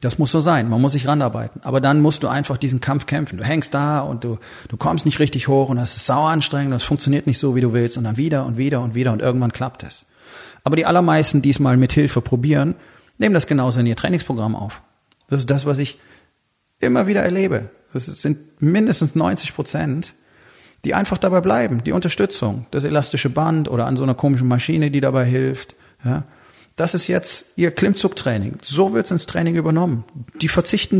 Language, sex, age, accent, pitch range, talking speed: German, male, 30-49, German, 125-155 Hz, 215 wpm